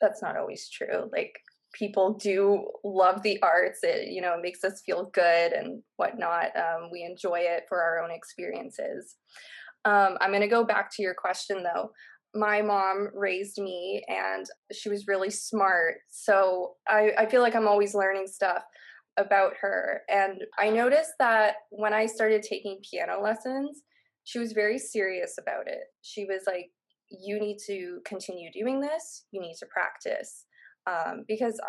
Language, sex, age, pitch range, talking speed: English, female, 20-39, 185-220 Hz, 165 wpm